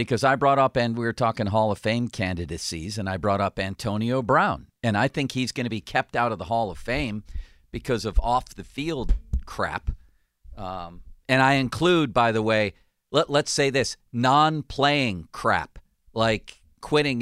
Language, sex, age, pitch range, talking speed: English, male, 50-69, 95-135 Hz, 175 wpm